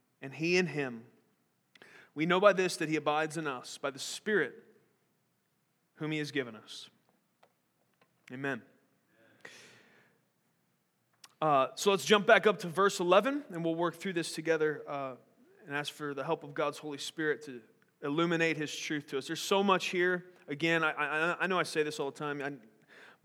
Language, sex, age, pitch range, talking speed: English, male, 30-49, 140-165 Hz, 180 wpm